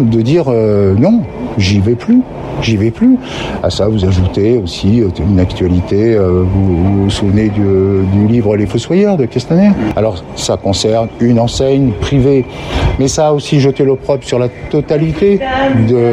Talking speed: 165 wpm